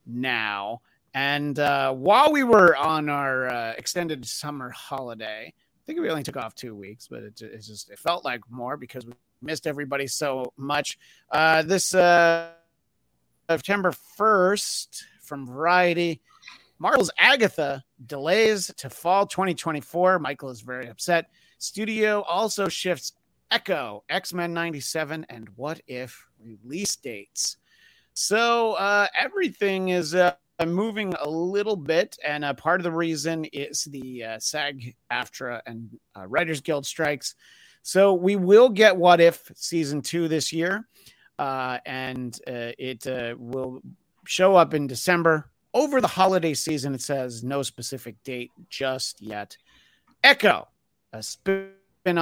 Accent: American